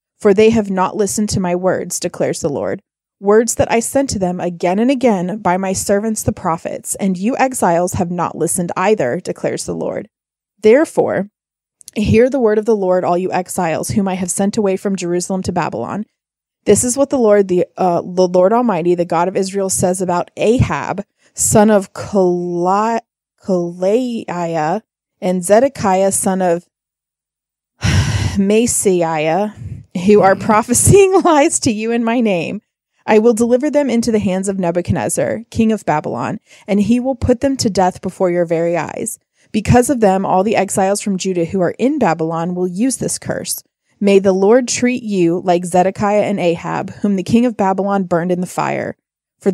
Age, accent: 20-39, American